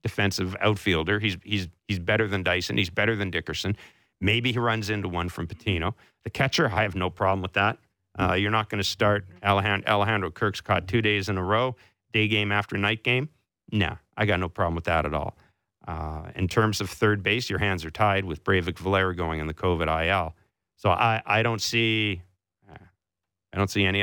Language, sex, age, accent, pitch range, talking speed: English, male, 40-59, American, 90-115 Hz, 205 wpm